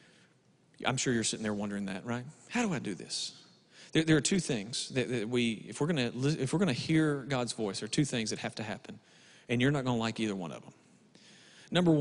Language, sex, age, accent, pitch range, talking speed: English, male, 40-59, American, 115-160 Hz, 240 wpm